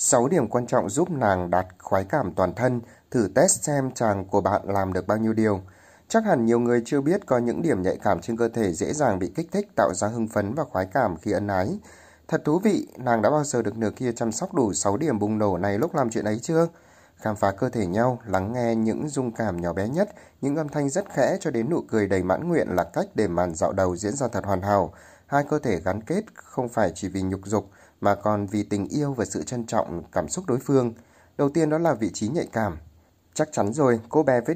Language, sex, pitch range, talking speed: Vietnamese, male, 100-130 Hz, 255 wpm